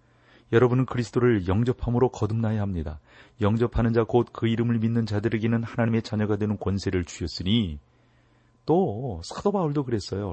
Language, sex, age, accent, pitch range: Korean, male, 30-49, native, 95-125 Hz